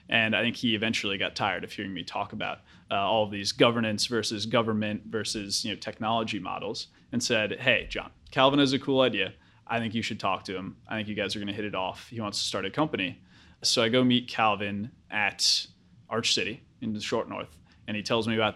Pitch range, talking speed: 105-115 Hz, 235 wpm